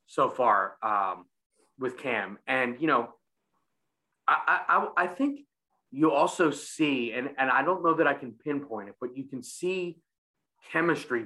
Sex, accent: male, American